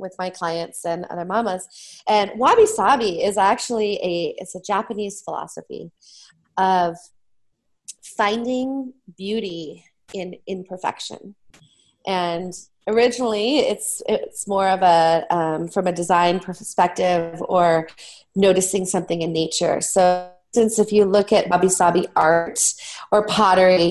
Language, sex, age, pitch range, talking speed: English, female, 20-39, 175-210 Hz, 120 wpm